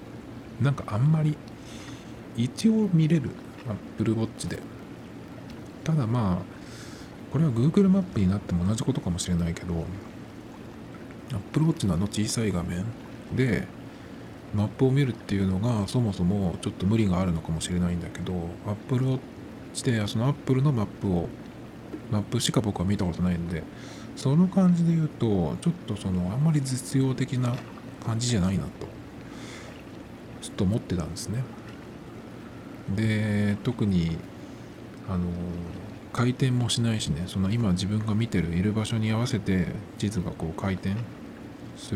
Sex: male